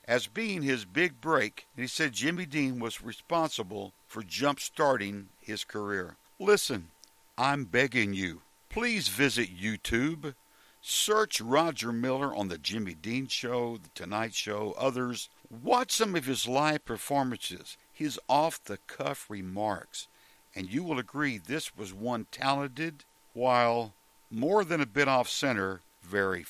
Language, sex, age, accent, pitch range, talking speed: English, male, 60-79, American, 115-155 Hz, 130 wpm